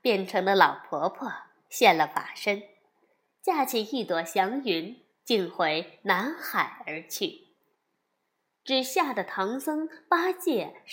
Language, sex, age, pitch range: Chinese, female, 20-39, 215-335 Hz